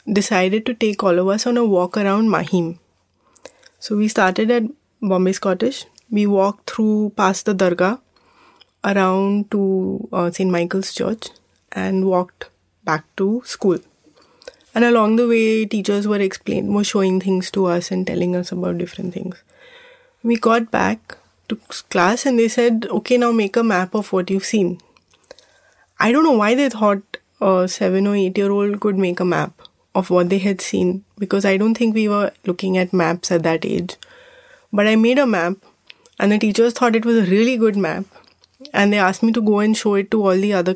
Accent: Indian